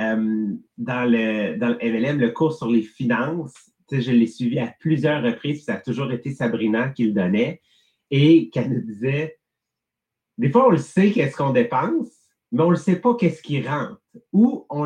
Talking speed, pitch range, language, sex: 195 wpm, 120-185 Hz, English, male